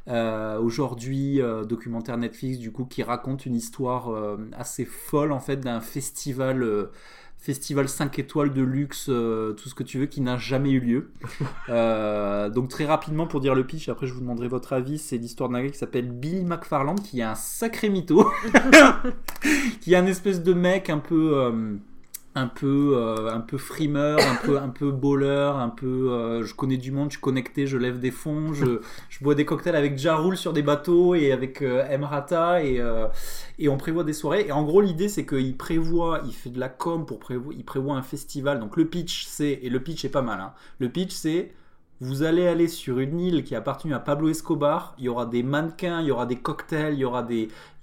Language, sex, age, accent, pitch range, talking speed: French, male, 20-39, French, 125-160 Hz, 215 wpm